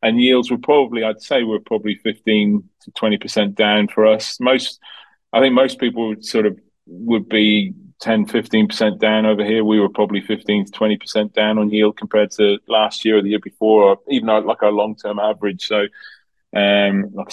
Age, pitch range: 30-49, 100-110 Hz